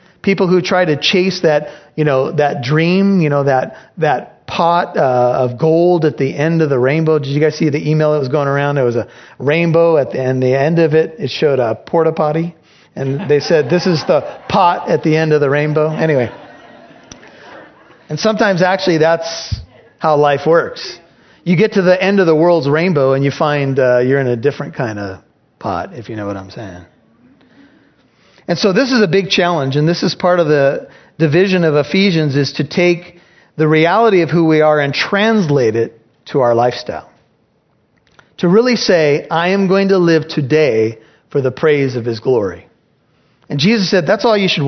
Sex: male